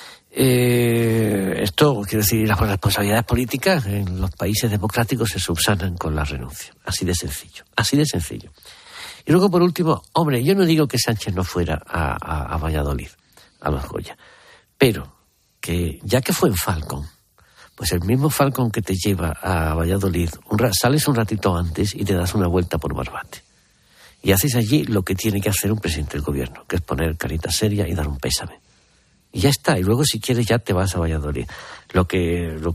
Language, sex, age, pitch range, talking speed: Spanish, male, 60-79, 80-110 Hz, 195 wpm